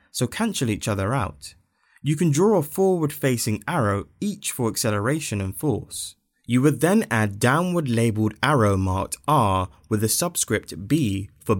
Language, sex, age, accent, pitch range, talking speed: English, male, 20-39, British, 100-140 Hz, 150 wpm